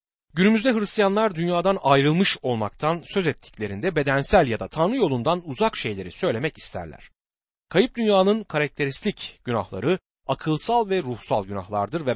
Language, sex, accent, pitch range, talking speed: Turkish, male, native, 125-185 Hz, 125 wpm